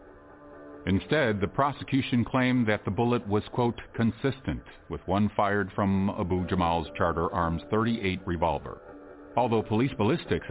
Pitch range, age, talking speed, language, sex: 85-115 Hz, 50-69, 130 wpm, English, male